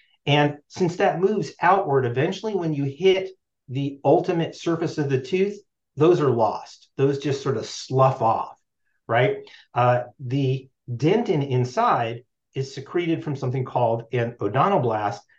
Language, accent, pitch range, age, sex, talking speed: English, American, 125-165 Hz, 50-69, male, 140 wpm